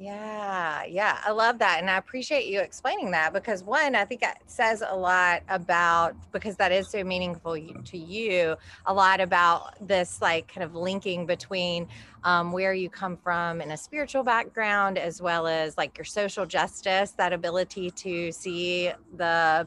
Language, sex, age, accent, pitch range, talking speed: English, female, 30-49, American, 155-190 Hz, 175 wpm